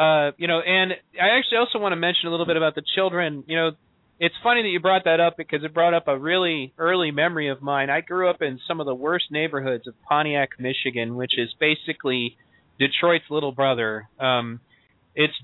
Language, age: English, 30-49